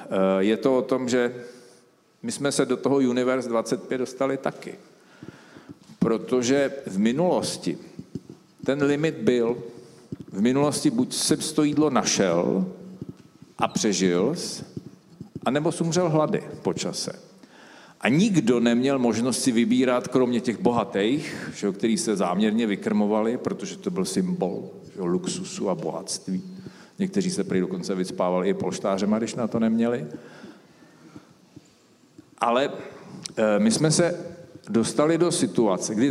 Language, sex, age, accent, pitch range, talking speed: Czech, male, 50-69, native, 115-150 Hz, 120 wpm